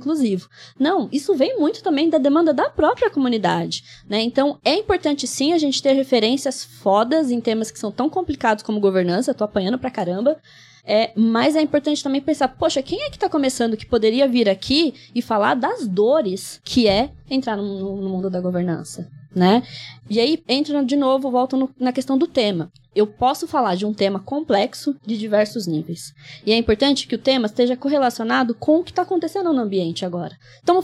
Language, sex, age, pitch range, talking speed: Portuguese, female, 20-39, 215-290 Hz, 190 wpm